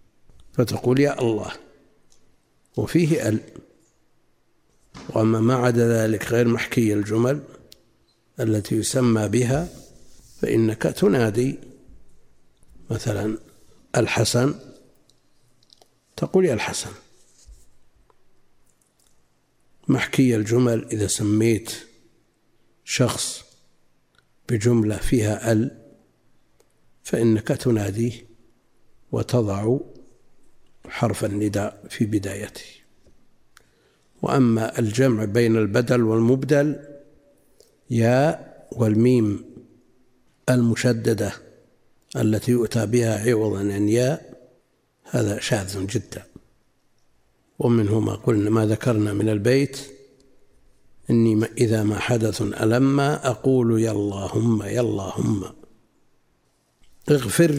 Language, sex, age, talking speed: Arabic, male, 60-79, 75 wpm